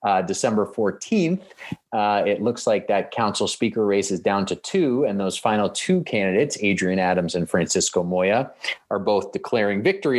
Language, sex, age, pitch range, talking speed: English, male, 30-49, 90-120 Hz, 170 wpm